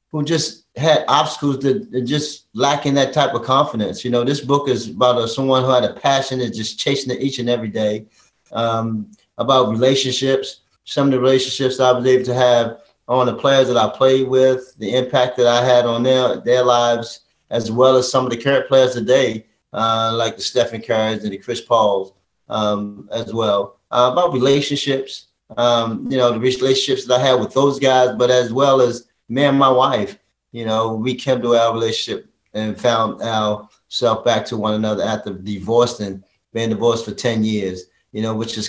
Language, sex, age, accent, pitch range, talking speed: English, male, 30-49, American, 105-130 Hz, 195 wpm